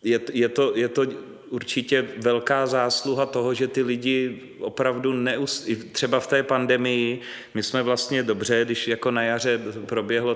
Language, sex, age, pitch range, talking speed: Czech, male, 30-49, 120-130 Hz, 140 wpm